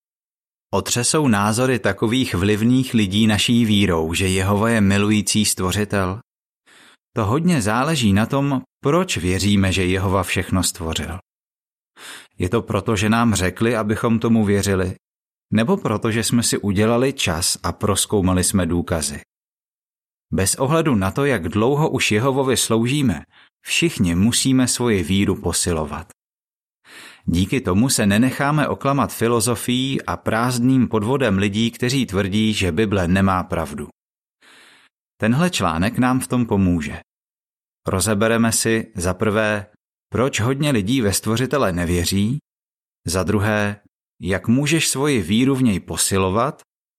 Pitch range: 95-125 Hz